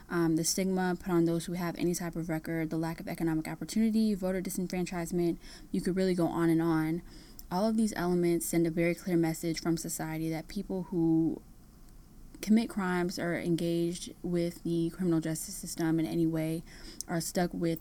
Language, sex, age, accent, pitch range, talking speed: English, female, 10-29, American, 165-185 Hz, 185 wpm